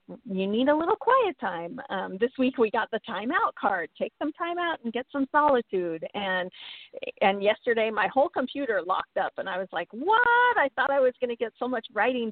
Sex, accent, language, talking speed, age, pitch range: female, American, English, 220 wpm, 40-59, 185-245 Hz